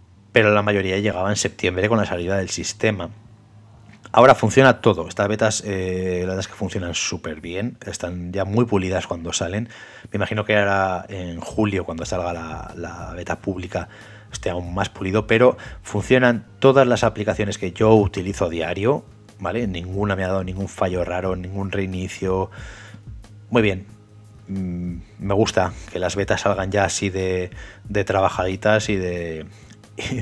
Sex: male